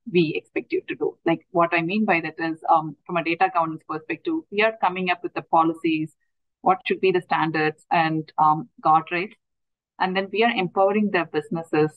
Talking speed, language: 200 wpm, English